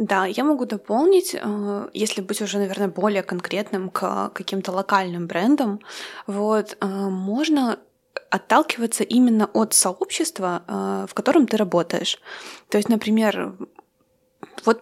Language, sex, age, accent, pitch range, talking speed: Russian, female, 20-39, native, 200-250 Hz, 115 wpm